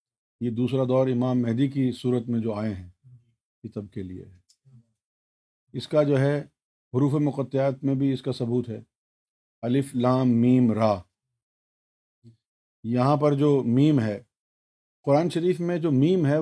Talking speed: 155 wpm